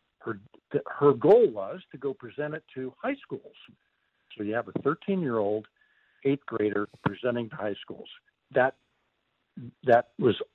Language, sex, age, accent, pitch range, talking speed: English, male, 50-69, American, 120-160 Hz, 140 wpm